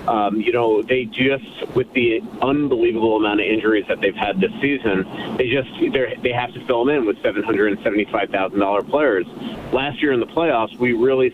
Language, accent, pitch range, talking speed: English, American, 105-135 Hz, 180 wpm